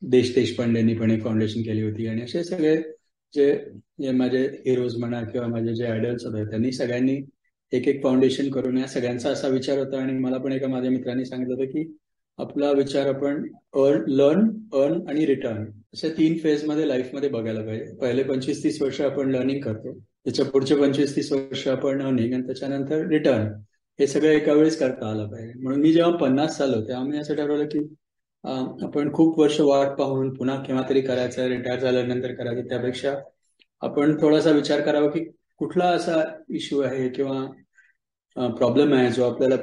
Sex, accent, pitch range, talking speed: male, native, 120-145 Hz, 185 wpm